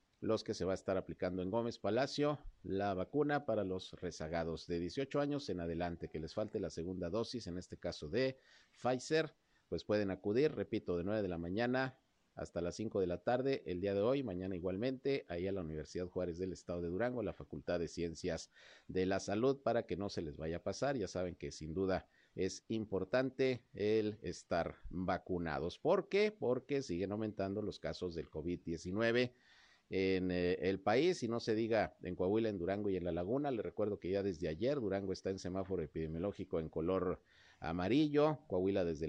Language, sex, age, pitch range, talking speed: Spanish, male, 50-69, 90-115 Hz, 195 wpm